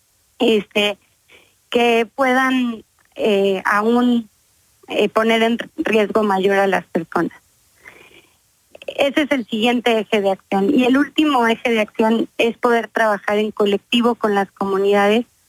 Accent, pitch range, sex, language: Mexican, 205-240 Hz, female, Spanish